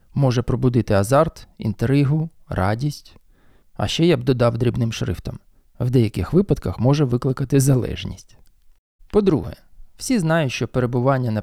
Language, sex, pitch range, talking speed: Ukrainian, male, 110-145 Hz, 125 wpm